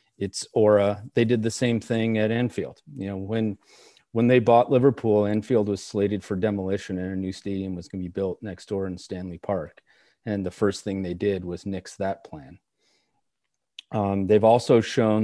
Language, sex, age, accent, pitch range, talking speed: English, male, 40-59, American, 100-115 Hz, 195 wpm